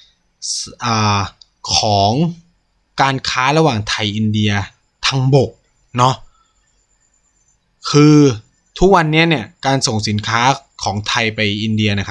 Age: 20-39